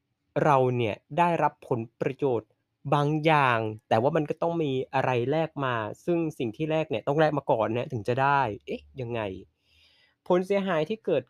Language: Thai